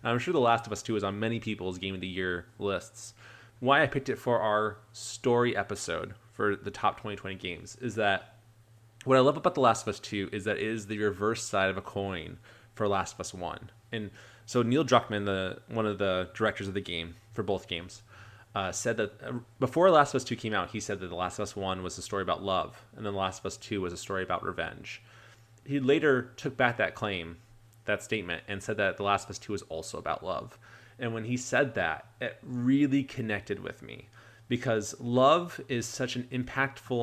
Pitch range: 100-120 Hz